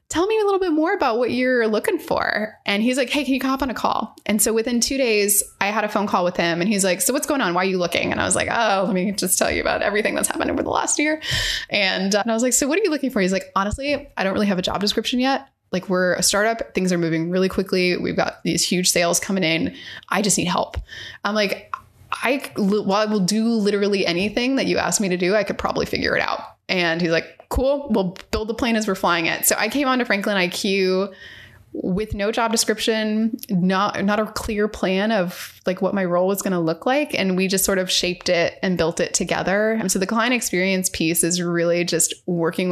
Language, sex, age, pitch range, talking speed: English, female, 20-39, 185-230 Hz, 255 wpm